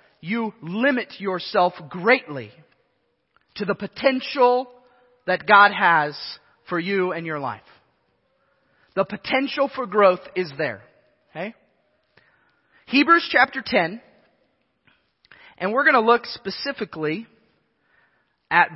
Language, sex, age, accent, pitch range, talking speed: English, male, 30-49, American, 185-255 Hz, 105 wpm